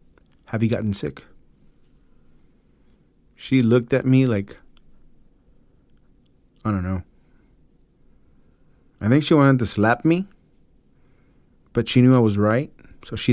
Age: 30-49